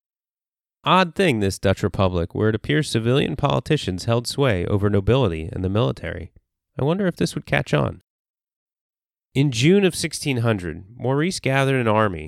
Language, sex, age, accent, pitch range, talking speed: English, male, 30-49, American, 100-135 Hz, 155 wpm